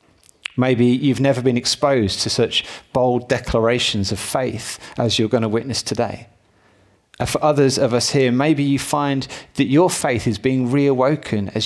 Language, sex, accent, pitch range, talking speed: English, male, British, 105-135 Hz, 165 wpm